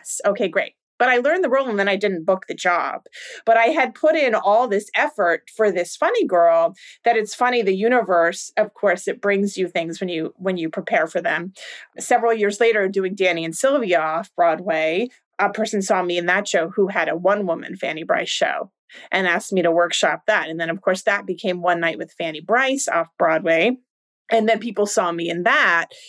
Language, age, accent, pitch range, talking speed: English, 30-49, American, 175-230 Hz, 215 wpm